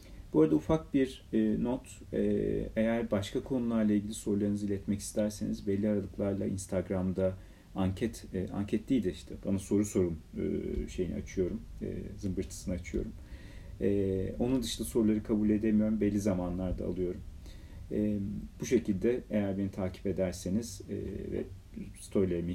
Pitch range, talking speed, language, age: 90-110 Hz, 115 wpm, Turkish, 40-59